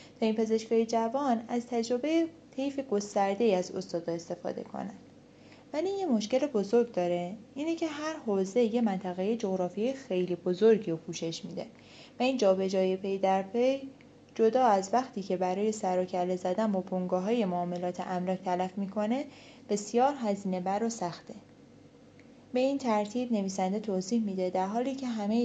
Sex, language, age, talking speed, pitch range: female, Persian, 20-39, 145 wpm, 185-240 Hz